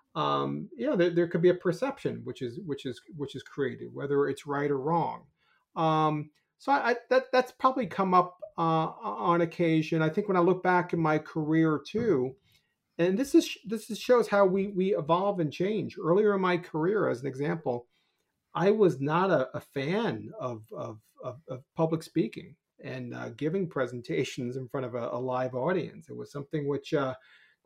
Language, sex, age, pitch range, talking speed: English, male, 40-59, 130-175 Hz, 195 wpm